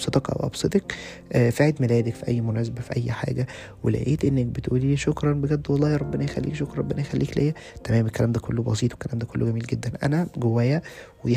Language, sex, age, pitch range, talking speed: Arabic, male, 20-39, 115-135 Hz, 190 wpm